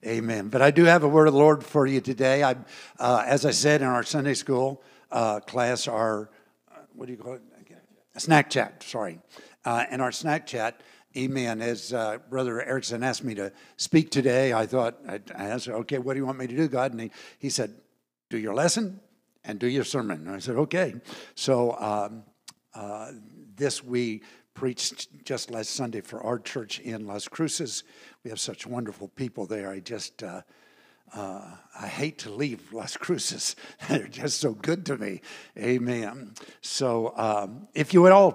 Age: 60-79